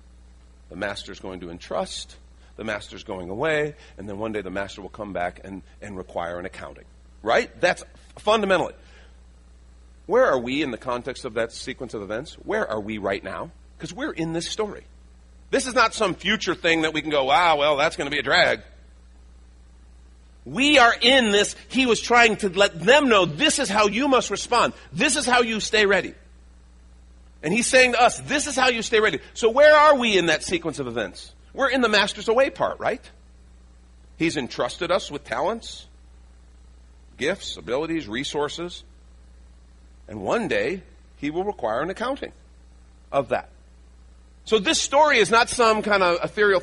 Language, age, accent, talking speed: English, 40-59, American, 185 wpm